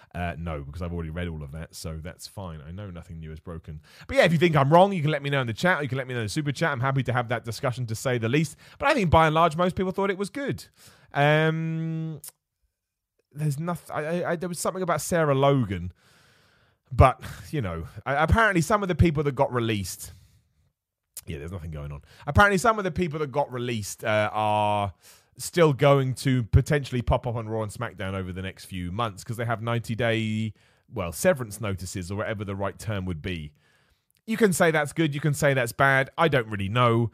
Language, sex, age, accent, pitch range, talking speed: English, male, 30-49, British, 100-150 Hz, 235 wpm